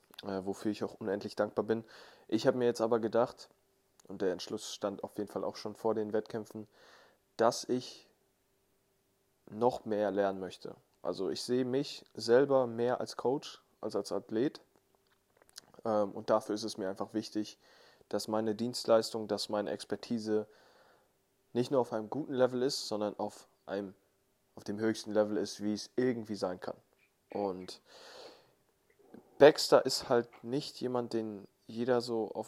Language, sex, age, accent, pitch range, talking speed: German, male, 20-39, German, 105-125 Hz, 155 wpm